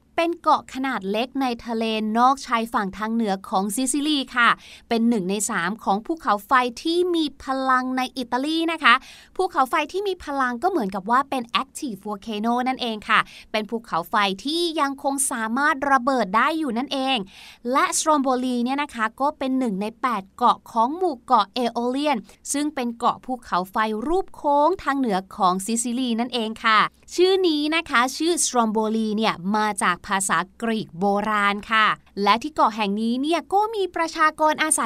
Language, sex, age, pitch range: Thai, female, 20-39, 225-305 Hz